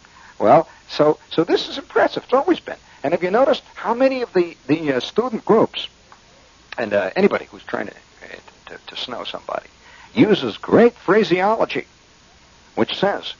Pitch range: 170-250 Hz